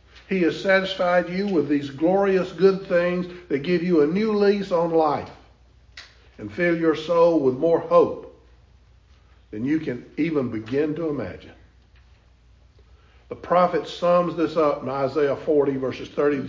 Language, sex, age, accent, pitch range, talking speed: English, male, 50-69, American, 140-180 Hz, 155 wpm